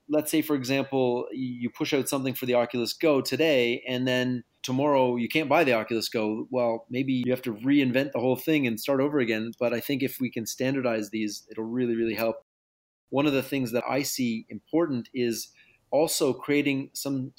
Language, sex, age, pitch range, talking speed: English, male, 30-49, 120-140 Hz, 205 wpm